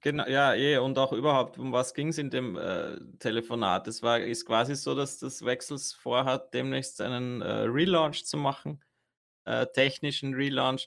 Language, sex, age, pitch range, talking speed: German, male, 20-39, 115-125 Hz, 170 wpm